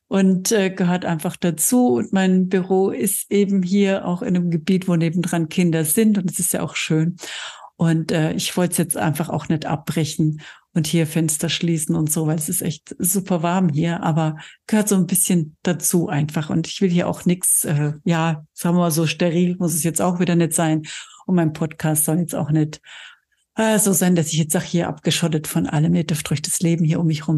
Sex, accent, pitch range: female, German, 165-195 Hz